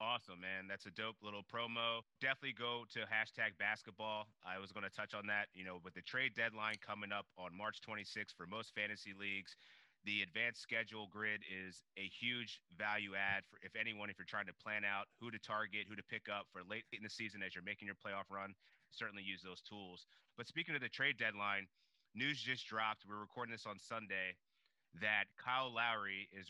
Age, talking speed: 30-49, 210 wpm